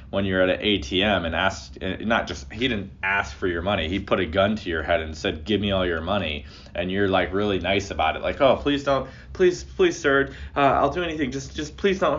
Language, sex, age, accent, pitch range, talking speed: English, male, 20-39, American, 75-105 Hz, 250 wpm